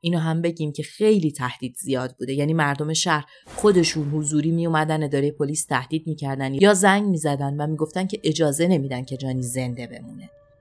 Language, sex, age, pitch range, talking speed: Persian, female, 30-49, 140-180 Hz, 175 wpm